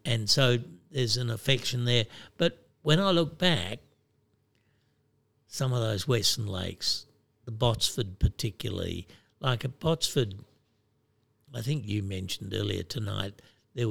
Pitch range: 105-125 Hz